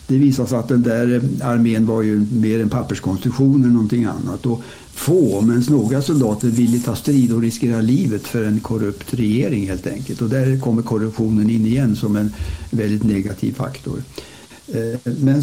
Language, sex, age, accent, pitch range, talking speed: Swedish, male, 60-79, Norwegian, 110-135 Hz, 170 wpm